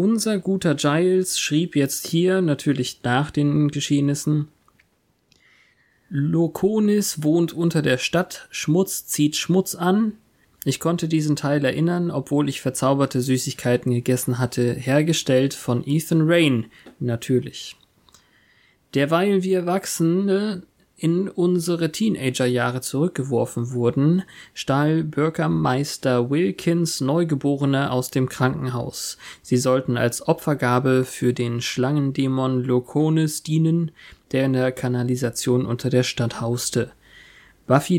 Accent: German